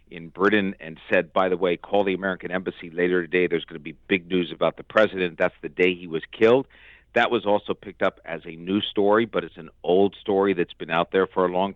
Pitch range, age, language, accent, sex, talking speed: 90-105 Hz, 50-69, English, American, male, 250 wpm